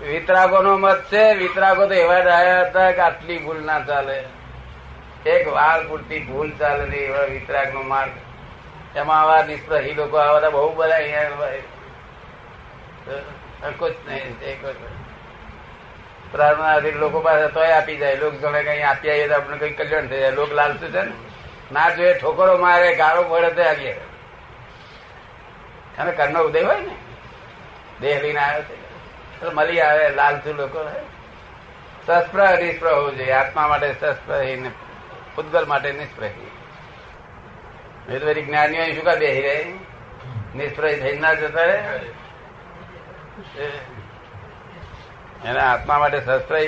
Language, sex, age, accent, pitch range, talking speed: Gujarati, male, 60-79, native, 145-175 Hz, 105 wpm